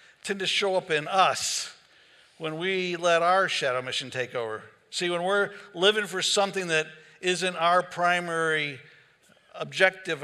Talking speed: 145 wpm